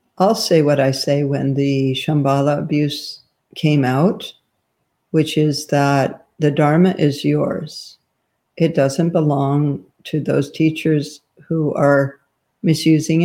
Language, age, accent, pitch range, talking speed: English, 60-79, American, 140-160 Hz, 120 wpm